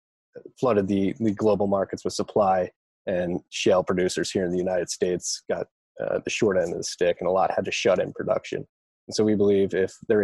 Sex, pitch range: male, 95-105 Hz